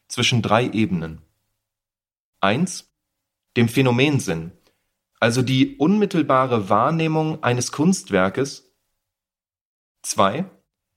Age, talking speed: 30-49, 70 wpm